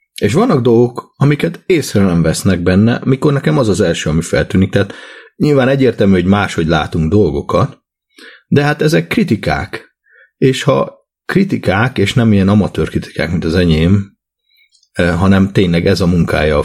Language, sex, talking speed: Hungarian, male, 155 wpm